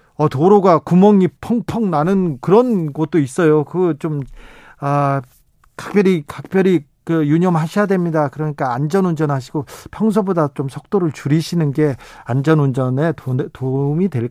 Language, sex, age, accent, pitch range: Korean, male, 40-59, native, 135-165 Hz